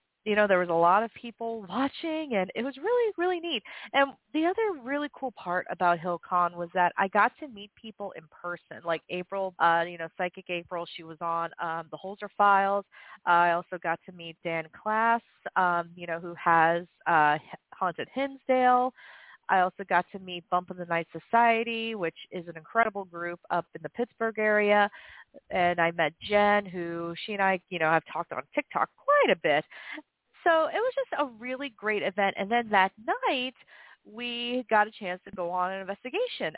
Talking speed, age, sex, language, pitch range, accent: 195 wpm, 40-59, female, English, 175-255 Hz, American